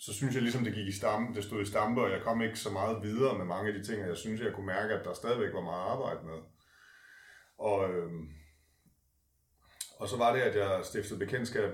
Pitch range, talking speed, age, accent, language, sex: 95-110 Hz, 235 wpm, 30-49, native, Danish, male